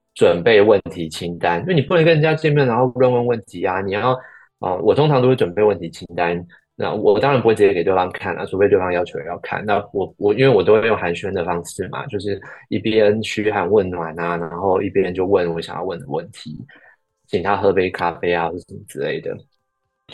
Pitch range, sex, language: 95-155 Hz, male, Chinese